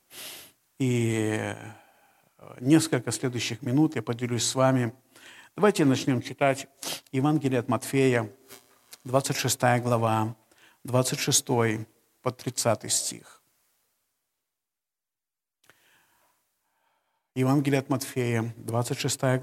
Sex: male